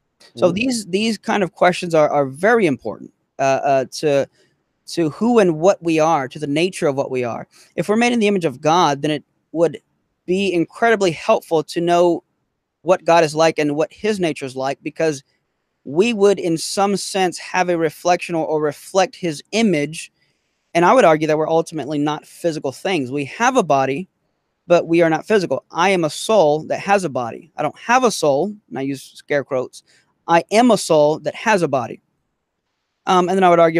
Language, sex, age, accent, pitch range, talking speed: English, male, 20-39, American, 145-180 Hz, 205 wpm